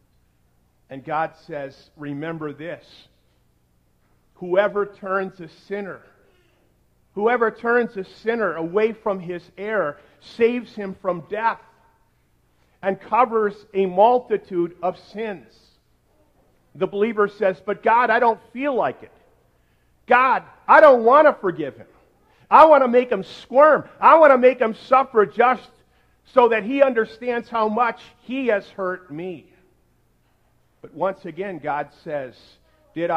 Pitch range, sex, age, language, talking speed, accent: 145-215 Hz, male, 50-69, English, 130 wpm, American